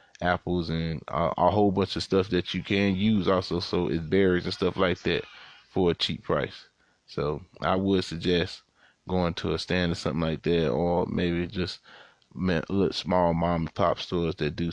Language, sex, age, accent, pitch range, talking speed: English, male, 20-39, American, 85-95 Hz, 190 wpm